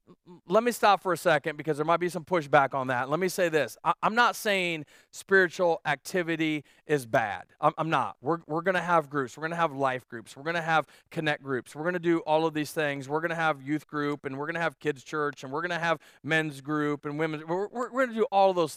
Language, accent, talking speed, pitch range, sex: English, American, 280 wpm, 160-220 Hz, male